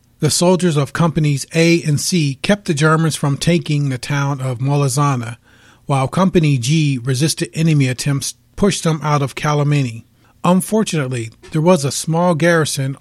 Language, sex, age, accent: English, male, 30-49, American